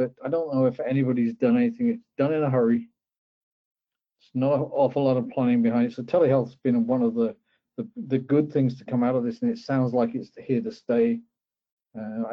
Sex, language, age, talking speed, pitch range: male, English, 50-69, 230 wpm, 120-160 Hz